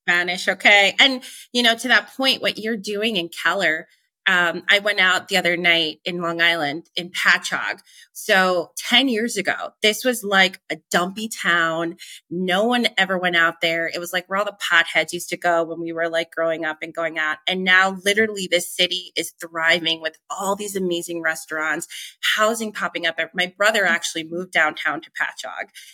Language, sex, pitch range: English, female, 170-205 Hz